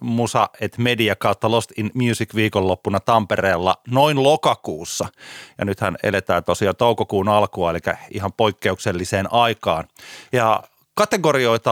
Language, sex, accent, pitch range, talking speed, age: Finnish, male, native, 105-150 Hz, 120 wpm, 30-49